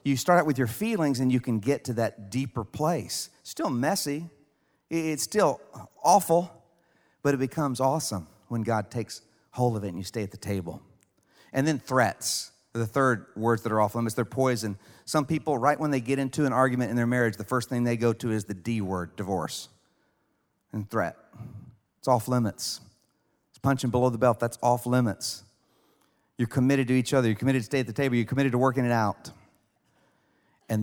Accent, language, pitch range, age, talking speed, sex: American, English, 110-145 Hz, 40-59, 200 wpm, male